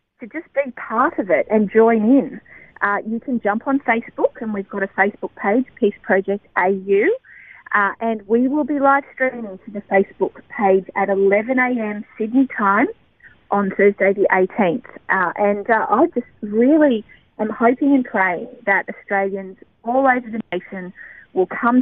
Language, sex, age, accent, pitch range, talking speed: English, female, 30-49, Australian, 195-250 Hz, 170 wpm